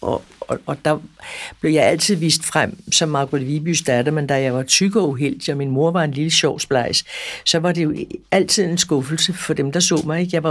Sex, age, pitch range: female, 60-79, 155-185 Hz